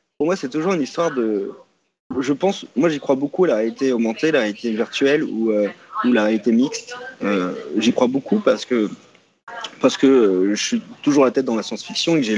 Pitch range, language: 120-155 Hz, French